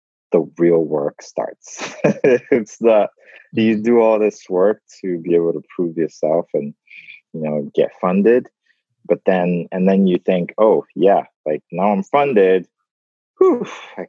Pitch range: 80-110 Hz